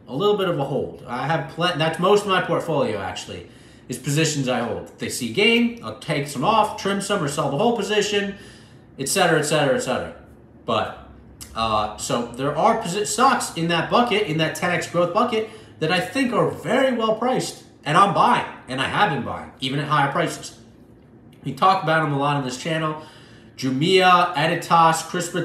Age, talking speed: 30-49, 195 wpm